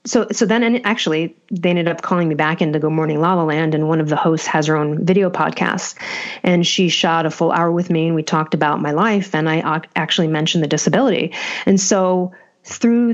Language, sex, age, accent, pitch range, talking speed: English, female, 30-49, American, 160-205 Hz, 235 wpm